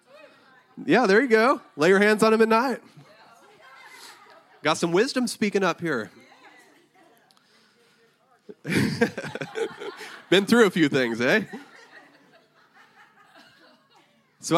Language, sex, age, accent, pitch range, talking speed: English, male, 30-49, American, 140-210 Hz, 100 wpm